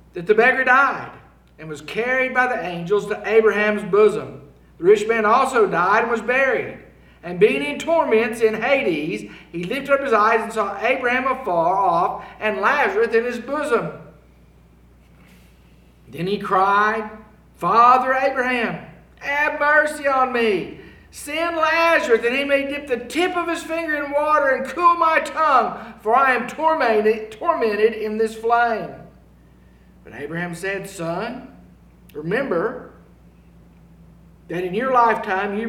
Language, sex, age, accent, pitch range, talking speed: English, male, 50-69, American, 195-260 Hz, 145 wpm